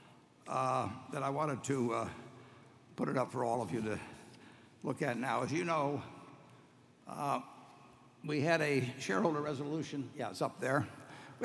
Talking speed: 160 wpm